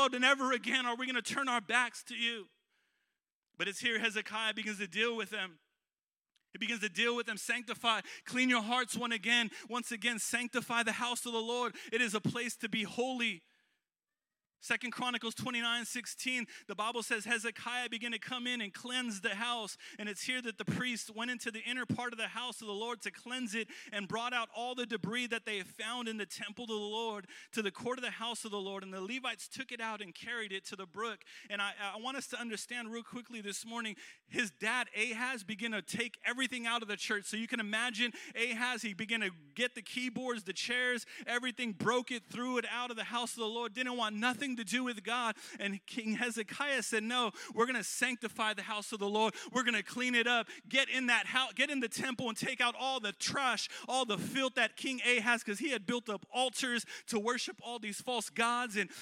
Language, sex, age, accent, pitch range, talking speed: English, male, 30-49, American, 220-245 Hz, 230 wpm